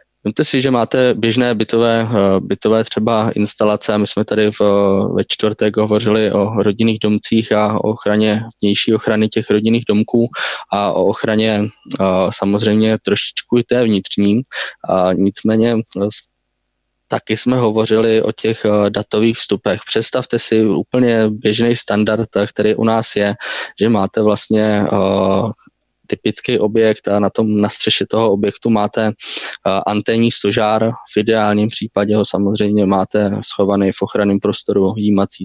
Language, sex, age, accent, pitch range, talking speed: Czech, male, 20-39, native, 100-110 Hz, 130 wpm